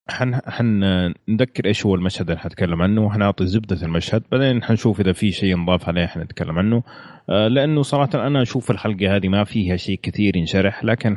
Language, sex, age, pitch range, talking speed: Arabic, male, 30-49, 90-110 Hz, 185 wpm